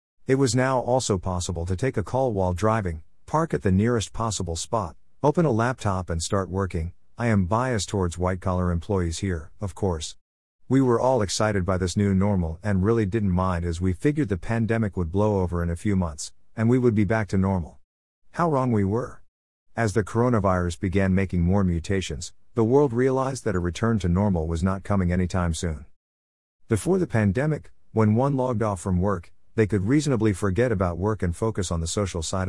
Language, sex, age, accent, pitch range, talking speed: English, male, 50-69, American, 90-115 Hz, 200 wpm